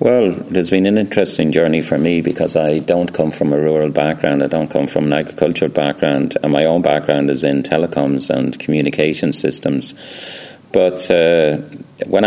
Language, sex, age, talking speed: English, male, 40-59, 175 wpm